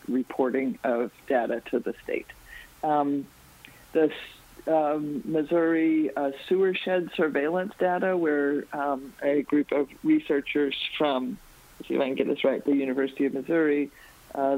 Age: 50-69